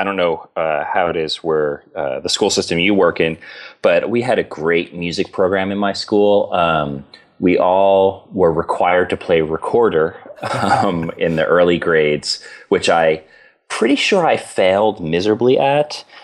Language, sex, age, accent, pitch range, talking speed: English, male, 30-49, American, 85-115 Hz, 170 wpm